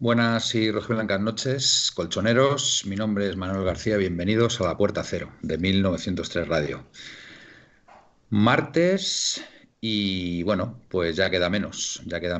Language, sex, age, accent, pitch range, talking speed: Spanish, male, 50-69, Spanish, 85-120 Hz, 135 wpm